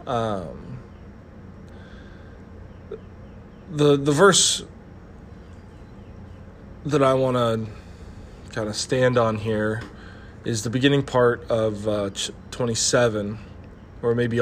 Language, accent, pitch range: English, American, 95-125 Hz